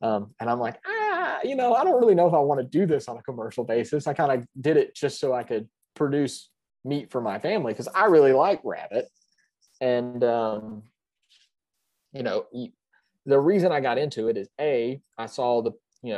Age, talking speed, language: 30-49, 210 wpm, English